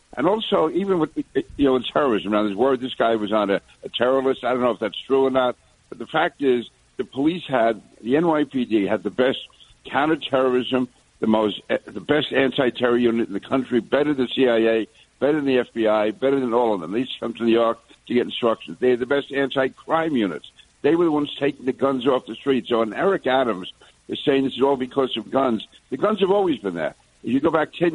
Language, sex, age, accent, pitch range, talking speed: English, male, 60-79, American, 115-140 Hz, 230 wpm